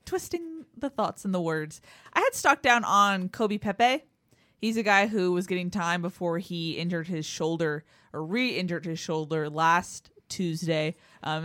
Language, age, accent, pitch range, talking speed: English, 20-39, American, 160-205 Hz, 170 wpm